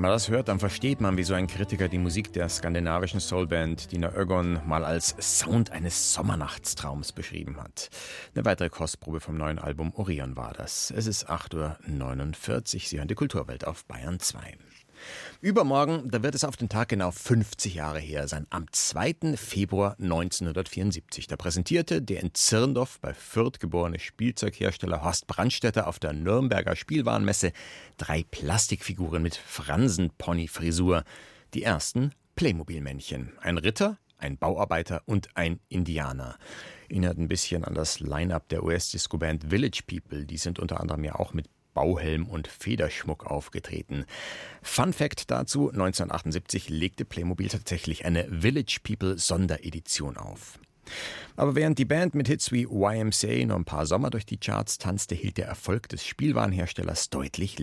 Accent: German